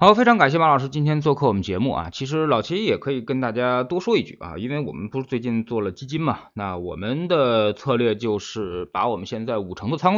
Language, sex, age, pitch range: Chinese, male, 20-39, 100-140 Hz